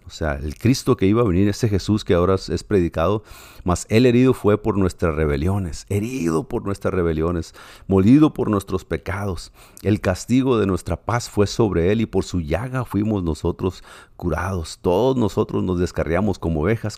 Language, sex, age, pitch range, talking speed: Spanish, male, 50-69, 80-105 Hz, 175 wpm